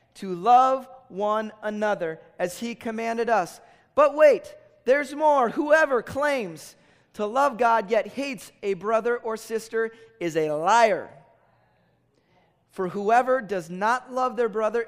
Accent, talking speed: American, 135 wpm